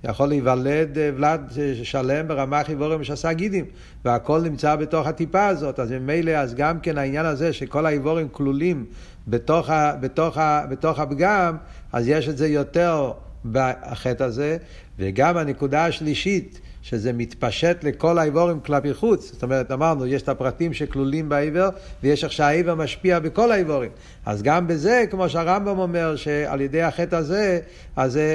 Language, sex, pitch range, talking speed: Hebrew, male, 140-170 Hz, 140 wpm